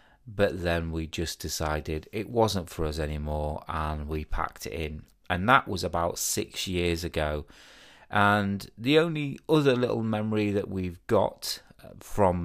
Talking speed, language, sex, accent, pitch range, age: 155 wpm, English, male, British, 85-110 Hz, 30-49